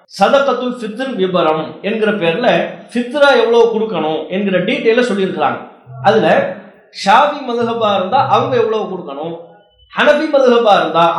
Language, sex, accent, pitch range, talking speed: English, male, Indian, 180-240 Hz, 120 wpm